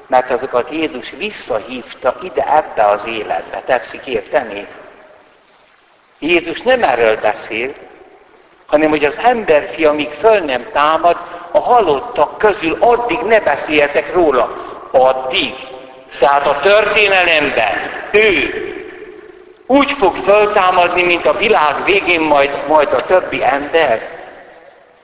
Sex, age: male, 60-79